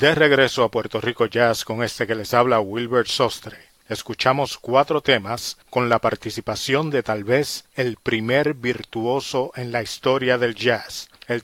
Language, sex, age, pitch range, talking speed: Spanish, male, 40-59, 120-140 Hz, 165 wpm